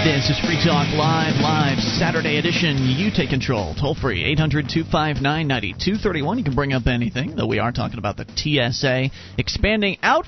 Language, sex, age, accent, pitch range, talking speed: English, male, 30-49, American, 130-175 Hz, 160 wpm